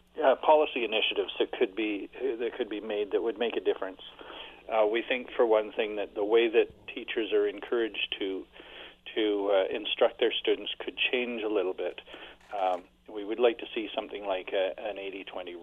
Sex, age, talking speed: male, 40-59, 190 wpm